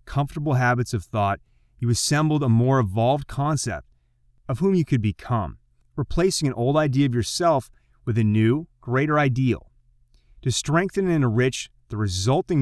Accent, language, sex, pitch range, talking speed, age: American, English, male, 115-145 Hz, 150 wpm, 30-49